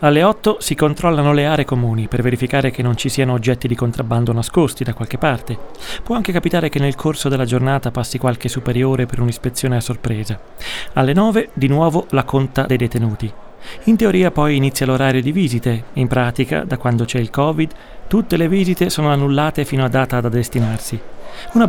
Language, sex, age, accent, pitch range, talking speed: Italian, male, 30-49, native, 125-150 Hz, 190 wpm